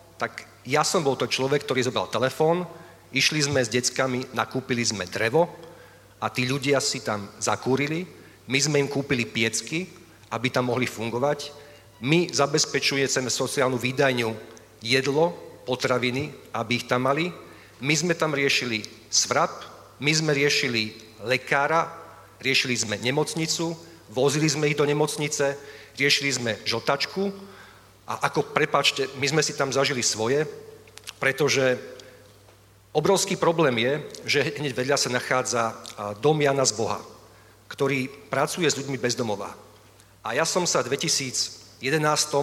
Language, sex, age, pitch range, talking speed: Slovak, male, 40-59, 115-150 Hz, 130 wpm